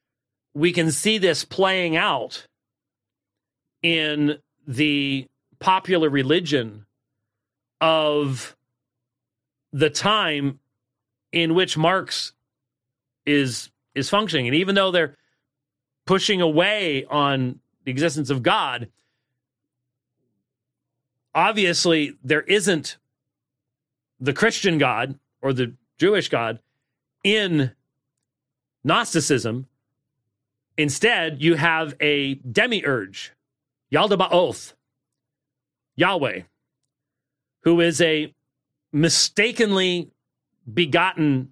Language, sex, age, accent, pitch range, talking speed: English, male, 40-59, American, 130-160 Hz, 80 wpm